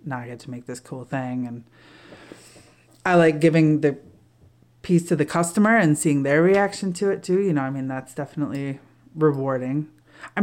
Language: English